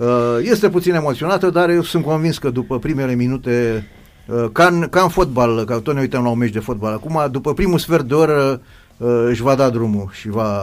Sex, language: male, Romanian